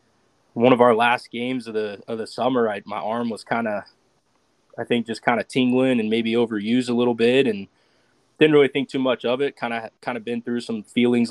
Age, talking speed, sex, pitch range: 20-39, 235 wpm, male, 105-120 Hz